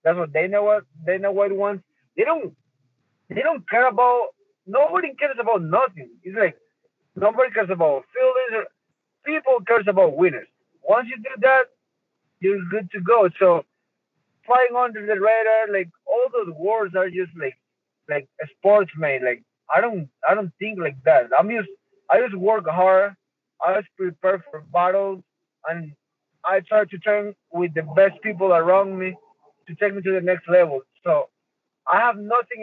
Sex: male